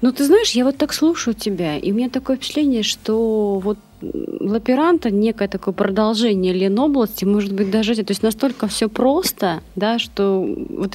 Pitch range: 160-210 Hz